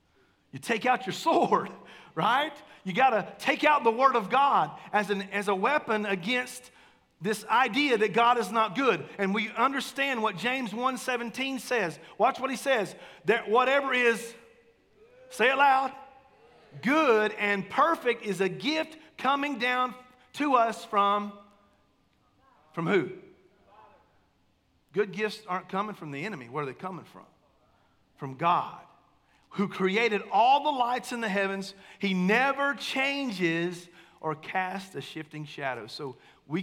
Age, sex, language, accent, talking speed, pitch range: 40-59, male, English, American, 145 wpm, 175-250 Hz